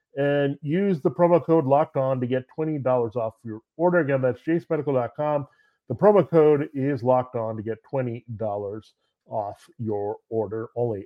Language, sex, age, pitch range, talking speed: English, male, 40-59, 120-155 Hz, 170 wpm